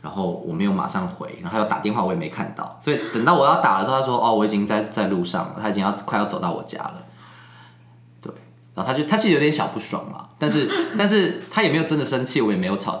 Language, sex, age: Chinese, male, 20-39